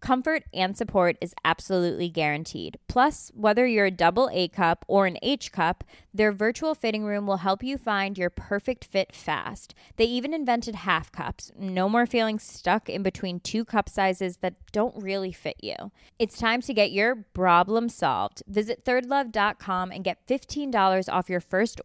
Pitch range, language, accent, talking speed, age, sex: 175-220 Hz, English, American, 175 wpm, 20-39, female